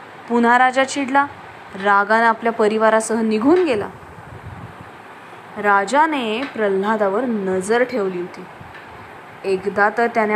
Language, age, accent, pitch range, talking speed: English, 20-39, Indian, 200-265 Hz, 85 wpm